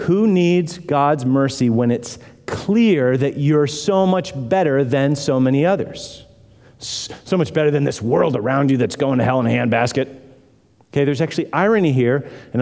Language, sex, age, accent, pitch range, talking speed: English, male, 40-59, American, 110-145 Hz, 175 wpm